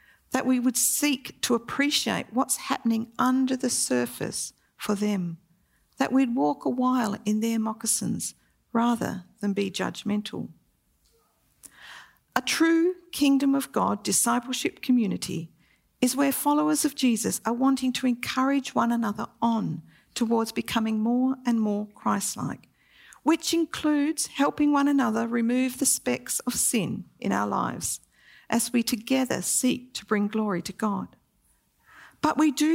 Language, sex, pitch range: English, female, 210-270 Hz